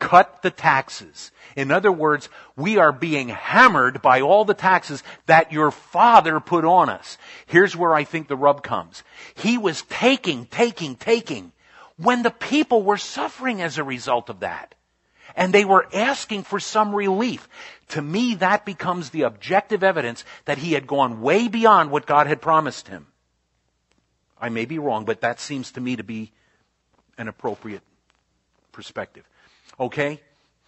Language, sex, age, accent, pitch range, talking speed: Italian, male, 50-69, American, 125-195 Hz, 160 wpm